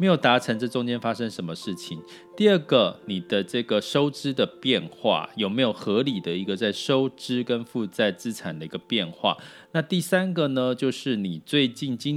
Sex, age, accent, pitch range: male, 30-49, native, 105-150 Hz